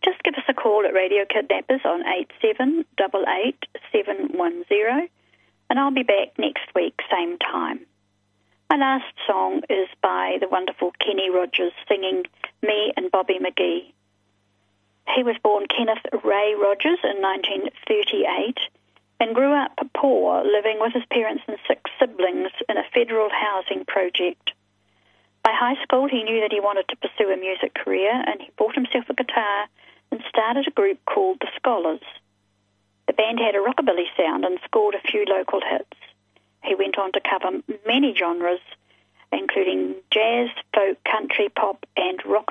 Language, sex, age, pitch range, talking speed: English, female, 40-59, 180-250 Hz, 155 wpm